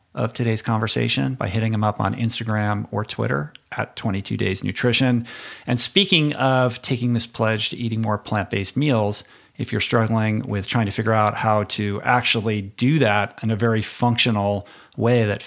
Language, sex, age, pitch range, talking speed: English, male, 50-69, 105-125 Hz, 175 wpm